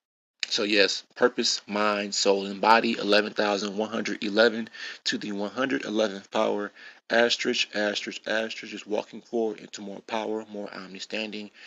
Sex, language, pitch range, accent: male, English, 105-130 Hz, American